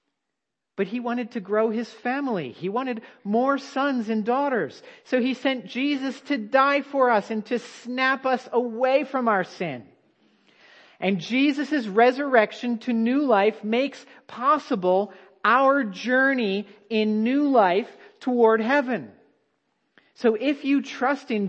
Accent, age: American, 50-69